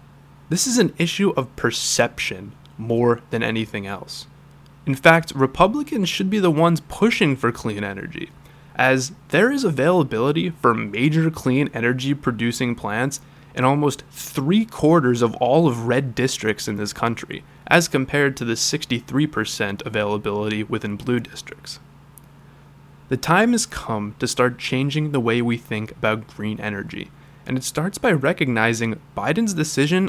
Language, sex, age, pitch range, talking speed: English, male, 20-39, 120-155 Hz, 145 wpm